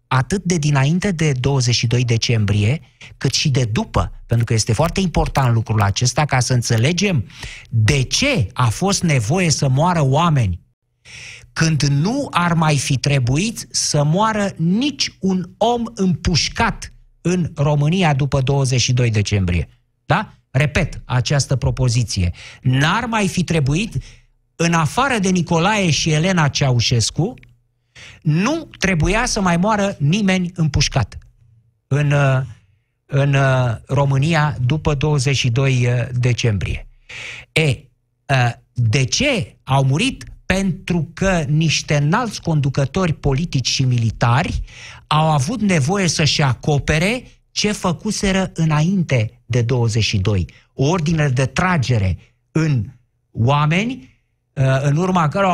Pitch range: 120-165 Hz